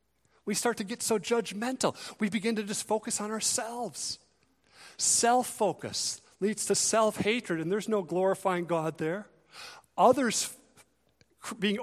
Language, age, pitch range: English, 40-59, 125-210 Hz